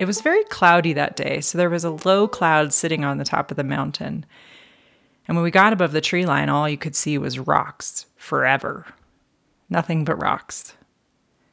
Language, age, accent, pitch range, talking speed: English, 30-49, American, 150-175 Hz, 195 wpm